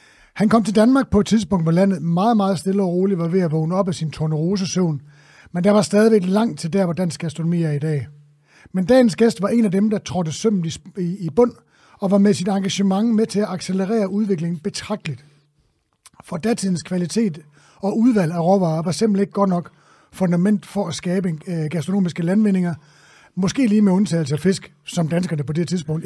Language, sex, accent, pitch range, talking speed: English, male, Danish, 165-210 Hz, 200 wpm